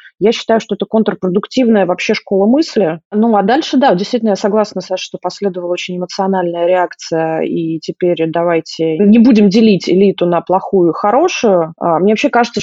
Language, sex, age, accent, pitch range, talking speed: Russian, female, 20-39, native, 180-220 Hz, 170 wpm